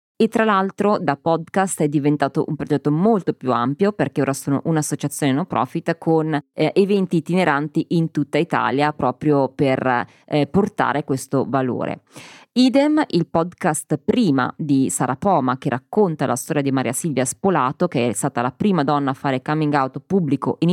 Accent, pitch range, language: native, 135-185 Hz, Italian